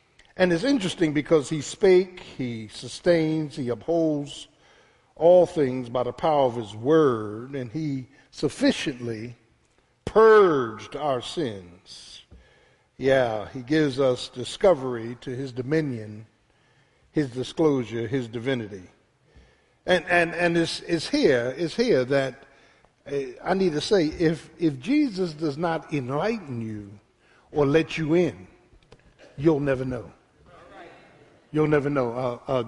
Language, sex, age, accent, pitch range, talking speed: English, male, 60-79, American, 125-165 Hz, 125 wpm